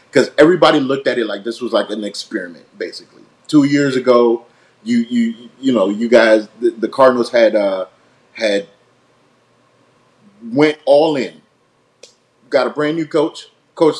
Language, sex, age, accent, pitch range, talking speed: English, male, 30-49, American, 125-150 Hz, 155 wpm